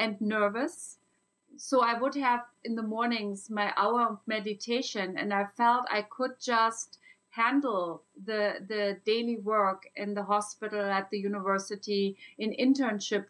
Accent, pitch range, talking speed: German, 210-260 Hz, 145 wpm